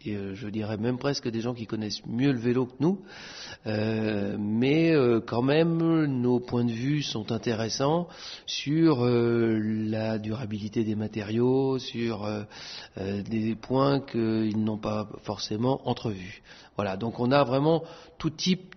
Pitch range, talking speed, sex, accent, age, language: 110-135 Hz, 145 wpm, male, French, 40-59, French